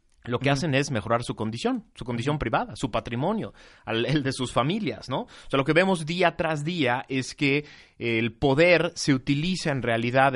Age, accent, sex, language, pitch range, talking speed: 30-49, Mexican, male, Spanish, 120-165 Hz, 190 wpm